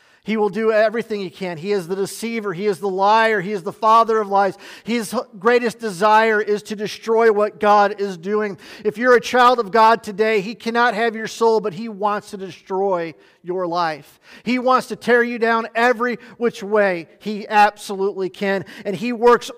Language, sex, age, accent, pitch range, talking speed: English, male, 40-59, American, 185-225 Hz, 195 wpm